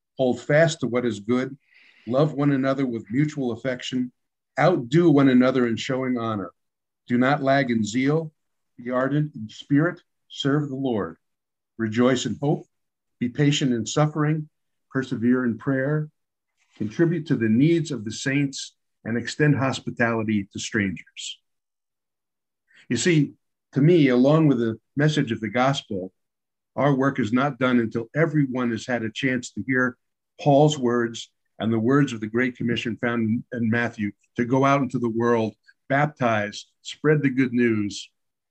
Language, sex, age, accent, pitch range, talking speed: English, male, 50-69, American, 120-145 Hz, 155 wpm